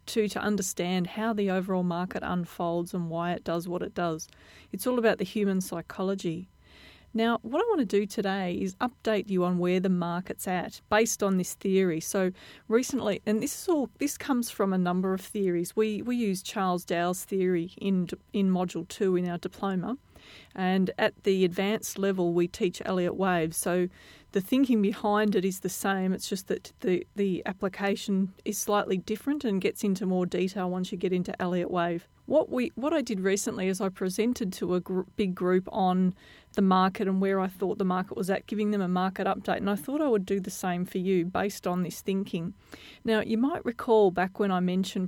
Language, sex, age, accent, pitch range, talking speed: English, female, 40-59, Australian, 185-215 Hz, 205 wpm